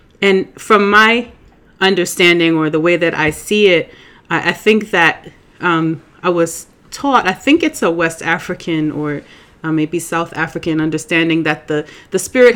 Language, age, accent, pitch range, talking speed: English, 30-49, American, 155-190 Hz, 165 wpm